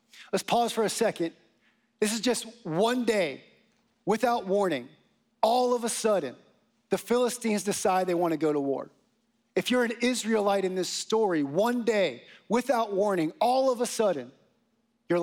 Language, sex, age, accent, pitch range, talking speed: English, male, 40-59, American, 180-225 Hz, 160 wpm